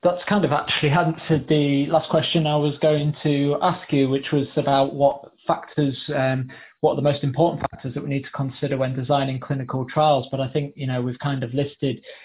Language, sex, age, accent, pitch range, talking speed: English, male, 20-39, British, 125-145 Hz, 215 wpm